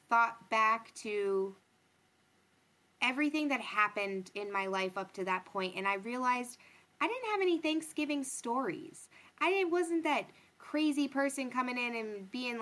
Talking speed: 150 wpm